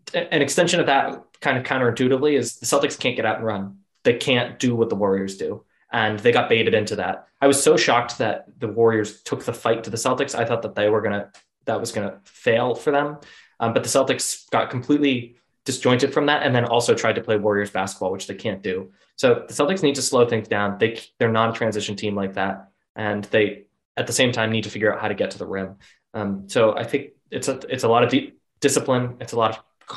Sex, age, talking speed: male, 20-39, 250 wpm